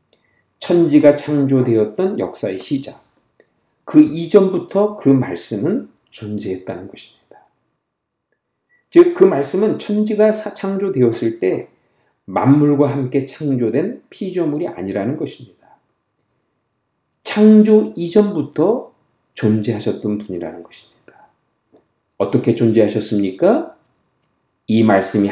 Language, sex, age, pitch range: Korean, male, 50-69, 115-195 Hz